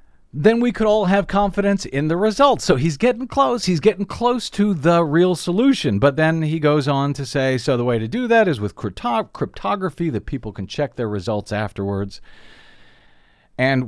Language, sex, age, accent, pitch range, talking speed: English, male, 50-69, American, 115-165 Hz, 190 wpm